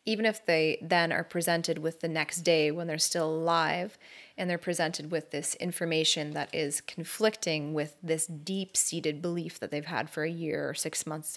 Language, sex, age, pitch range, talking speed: English, female, 20-39, 160-185 Hz, 190 wpm